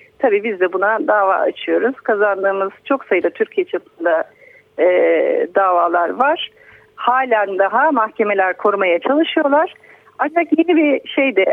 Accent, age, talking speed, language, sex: native, 50-69, 125 wpm, Turkish, female